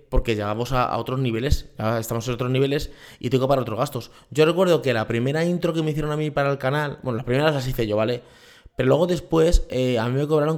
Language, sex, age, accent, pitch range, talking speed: Spanish, male, 20-39, Spanish, 120-150 Hz, 250 wpm